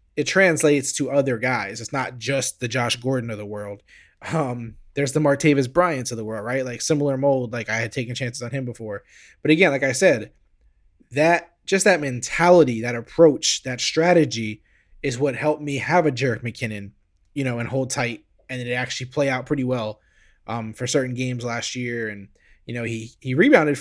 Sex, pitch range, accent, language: male, 115-150 Hz, American, English